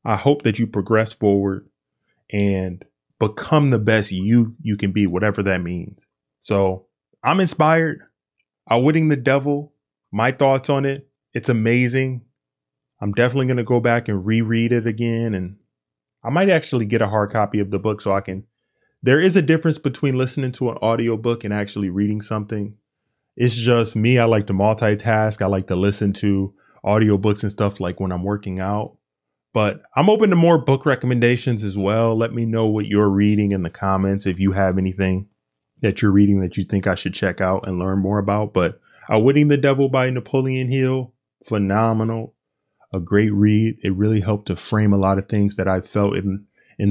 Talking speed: 190 wpm